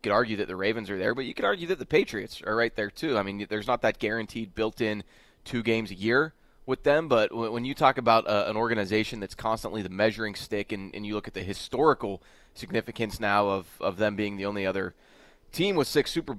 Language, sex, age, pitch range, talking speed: English, male, 20-39, 100-120 Hz, 235 wpm